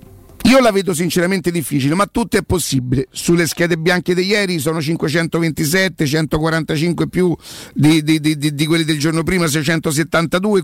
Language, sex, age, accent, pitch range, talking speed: Italian, male, 50-69, native, 160-195 Hz, 150 wpm